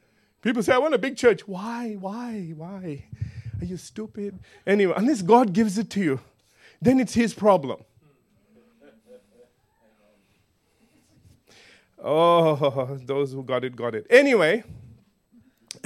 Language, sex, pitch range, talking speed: English, male, 185-270 Hz, 120 wpm